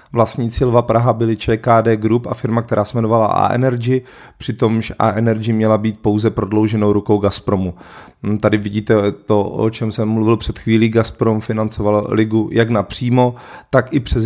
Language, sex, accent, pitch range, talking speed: Czech, male, native, 105-115 Hz, 155 wpm